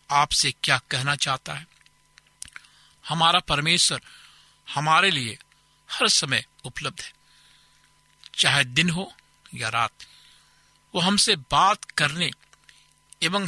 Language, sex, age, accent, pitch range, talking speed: Hindi, male, 50-69, native, 135-165 Hz, 100 wpm